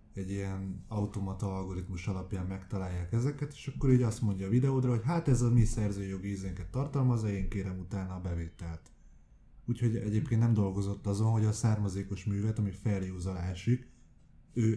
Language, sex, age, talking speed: Hungarian, male, 20-39, 160 wpm